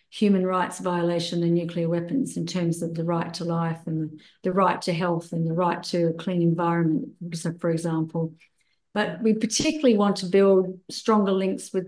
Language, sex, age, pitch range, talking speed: English, female, 40-59, 175-195 Hz, 180 wpm